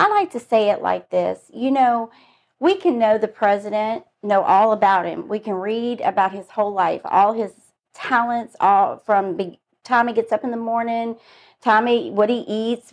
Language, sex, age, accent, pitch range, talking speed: English, female, 40-59, American, 205-260 Hz, 200 wpm